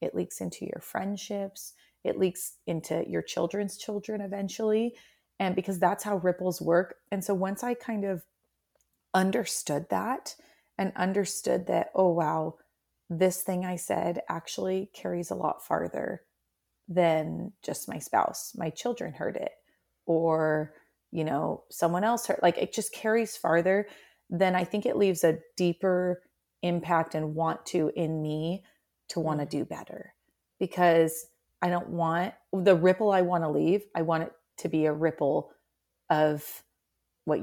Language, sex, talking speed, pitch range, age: English, female, 155 wpm, 160-190 Hz, 30-49